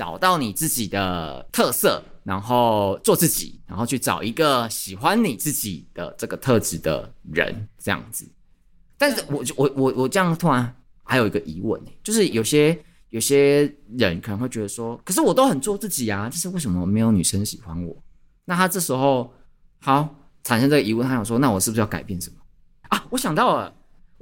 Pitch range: 100-140 Hz